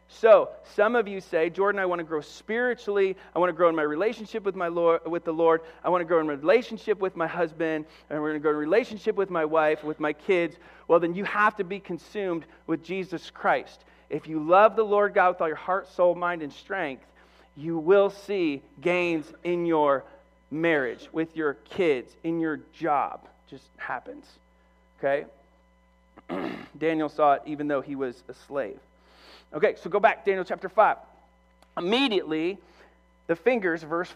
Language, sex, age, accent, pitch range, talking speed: English, male, 40-59, American, 150-190 Hz, 190 wpm